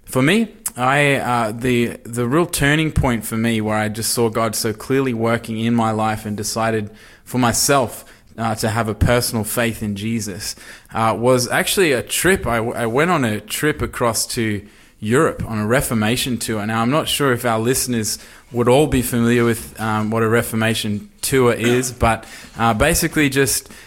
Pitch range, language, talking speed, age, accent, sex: 110-130 Hz, English, 190 wpm, 20-39, Australian, male